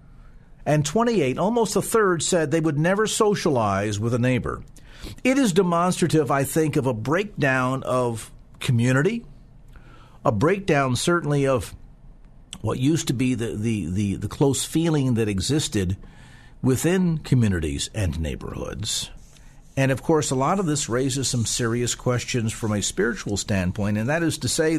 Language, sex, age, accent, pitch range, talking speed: English, male, 50-69, American, 120-160 Hz, 155 wpm